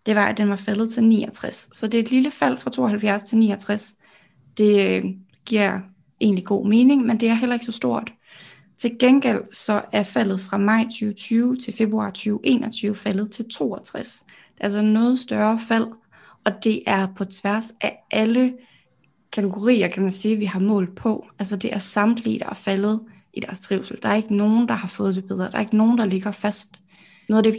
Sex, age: female, 20-39